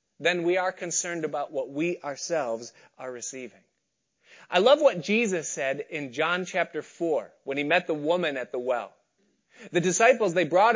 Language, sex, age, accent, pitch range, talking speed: English, male, 30-49, American, 160-230 Hz, 175 wpm